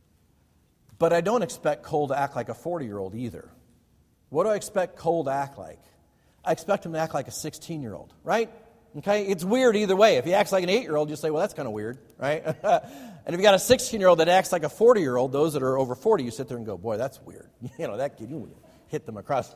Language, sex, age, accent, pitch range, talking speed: English, male, 50-69, American, 120-170 Hz, 240 wpm